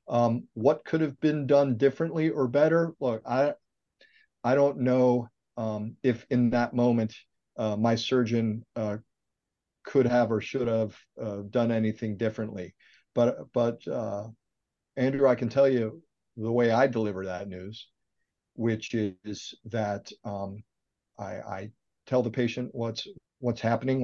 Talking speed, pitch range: 145 wpm, 110-130 Hz